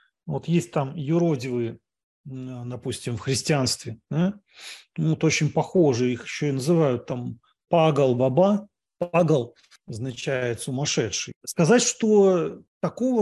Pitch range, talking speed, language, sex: 130-165 Hz, 110 wpm, English, male